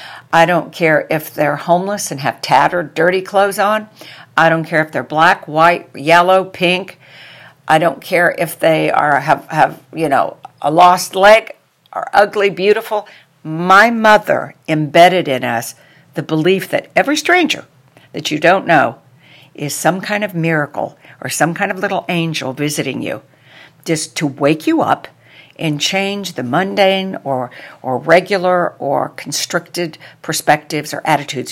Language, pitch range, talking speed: English, 150-180 Hz, 155 wpm